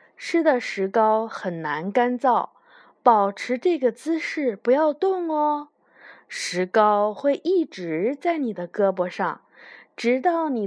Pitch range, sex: 195-295 Hz, female